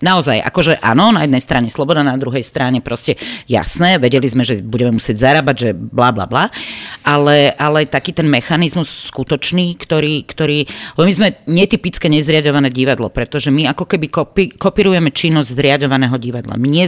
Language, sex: Slovak, female